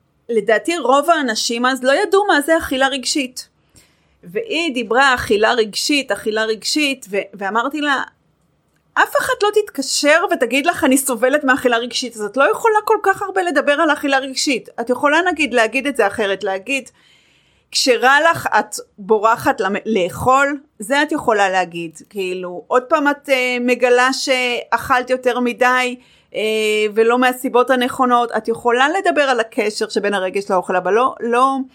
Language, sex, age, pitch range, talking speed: English, female, 30-49, 220-285 Hz, 145 wpm